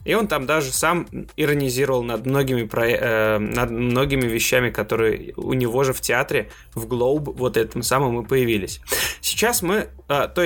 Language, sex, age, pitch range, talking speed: Russian, male, 20-39, 125-165 Hz, 150 wpm